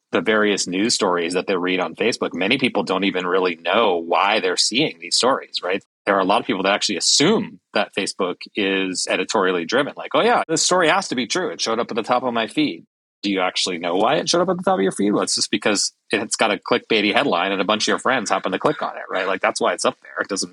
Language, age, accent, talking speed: English, 30-49, American, 280 wpm